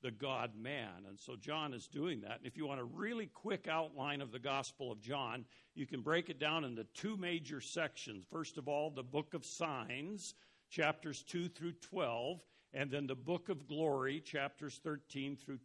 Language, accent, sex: English, American, male